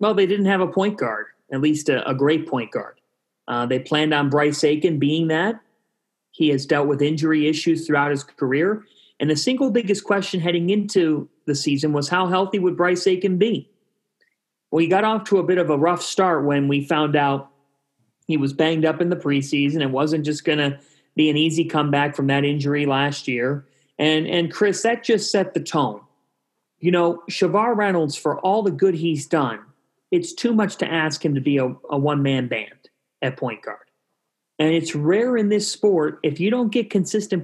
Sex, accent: male, American